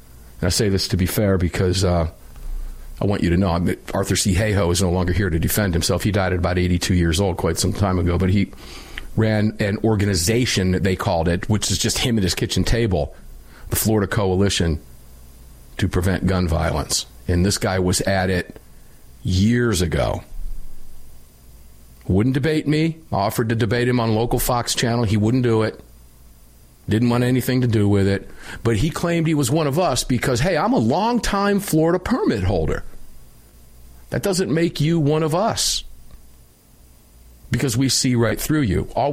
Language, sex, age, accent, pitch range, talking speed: English, male, 40-59, American, 90-120 Hz, 180 wpm